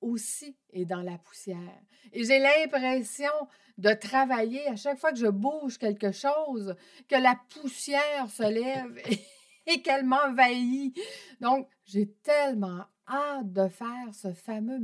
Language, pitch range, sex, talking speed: French, 200-255 Hz, female, 140 wpm